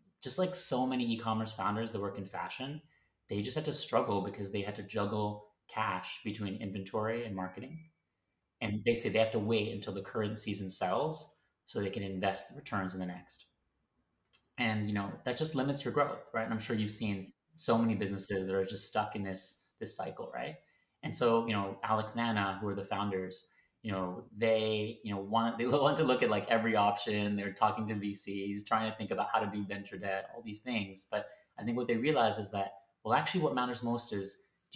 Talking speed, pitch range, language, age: 220 wpm, 100-120 Hz, English, 30-49